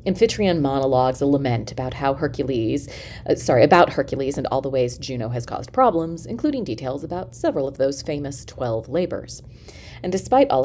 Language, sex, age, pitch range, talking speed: English, female, 30-49, 120-165 Hz, 175 wpm